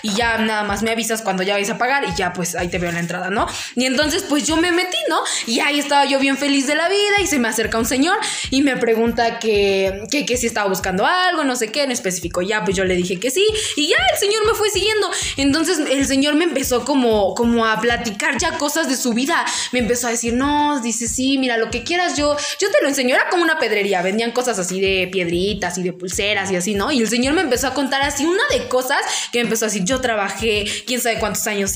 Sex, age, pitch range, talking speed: female, 20-39, 220-300 Hz, 260 wpm